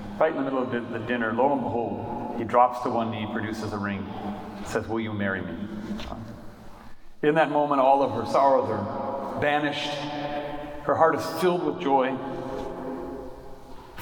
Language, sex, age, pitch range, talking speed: English, male, 40-59, 110-135 Hz, 170 wpm